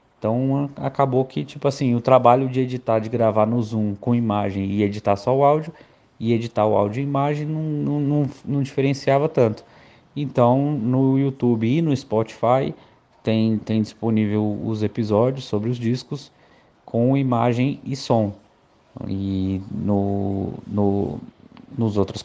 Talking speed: 140 wpm